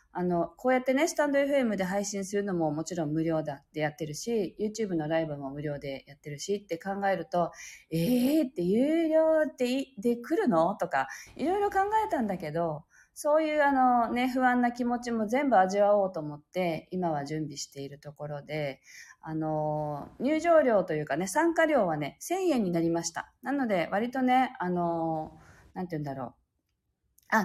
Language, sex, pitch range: Japanese, female, 160-265 Hz